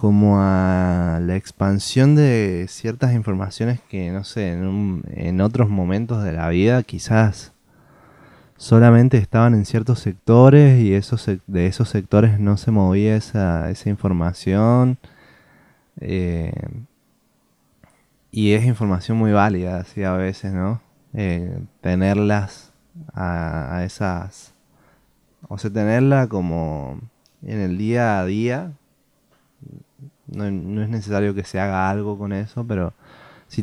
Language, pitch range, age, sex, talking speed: Spanish, 95-110 Hz, 20-39, male, 125 wpm